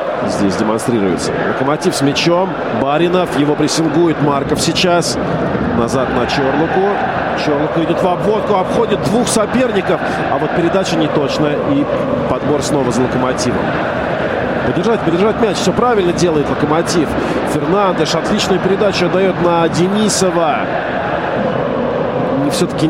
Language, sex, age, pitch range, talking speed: Russian, male, 40-59, 160-215 Hz, 115 wpm